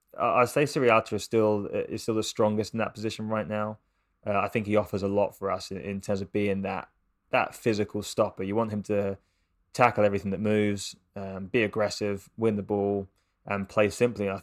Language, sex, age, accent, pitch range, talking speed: English, male, 20-39, British, 100-110 Hz, 210 wpm